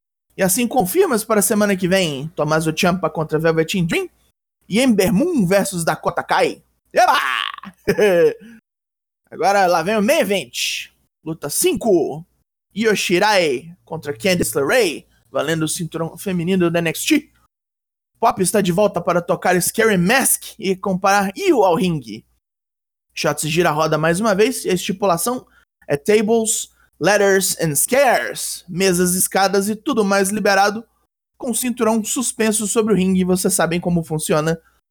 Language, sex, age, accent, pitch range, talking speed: Portuguese, male, 20-39, Brazilian, 175-220 Hz, 140 wpm